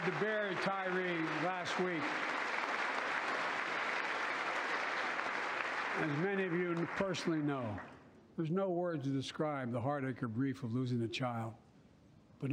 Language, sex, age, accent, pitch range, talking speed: English, male, 60-79, American, 125-145 Hz, 120 wpm